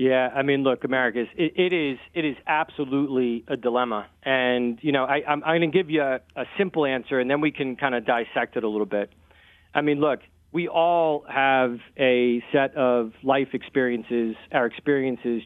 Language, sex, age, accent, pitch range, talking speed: English, male, 40-59, American, 125-165 Hz, 200 wpm